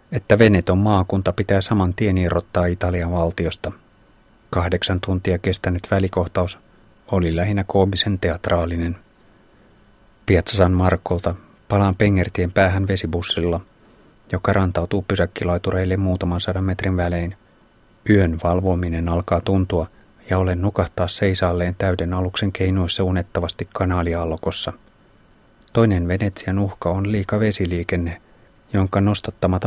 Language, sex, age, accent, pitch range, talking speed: Finnish, male, 30-49, native, 90-100 Hz, 105 wpm